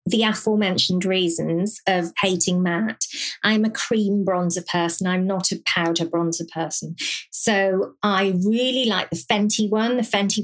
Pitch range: 180-225 Hz